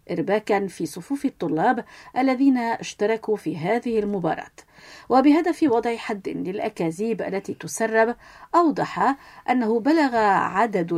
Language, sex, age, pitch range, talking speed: Arabic, female, 50-69, 195-260 Hz, 105 wpm